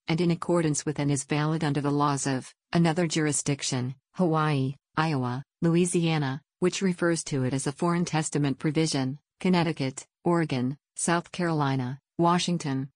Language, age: English, 50-69